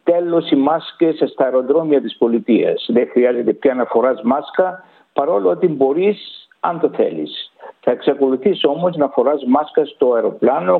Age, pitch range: 60-79, 140-205 Hz